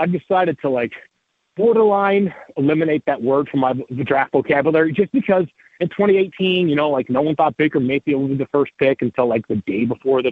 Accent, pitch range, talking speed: American, 130-165 Hz, 205 wpm